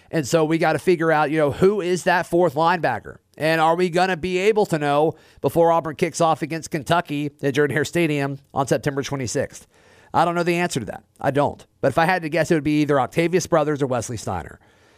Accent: American